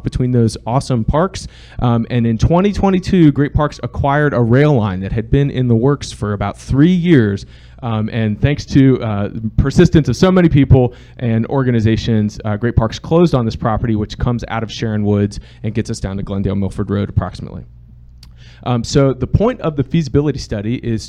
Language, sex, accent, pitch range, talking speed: English, male, American, 105-135 Hz, 190 wpm